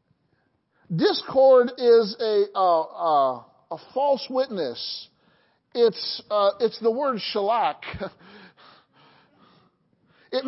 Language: English